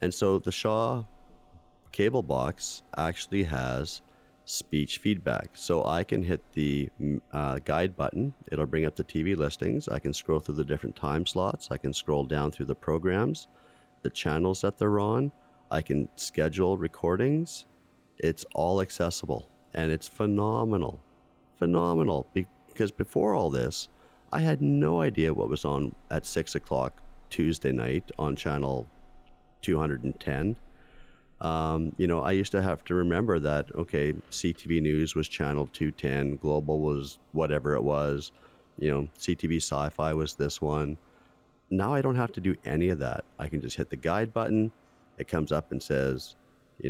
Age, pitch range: 40-59, 70-90 Hz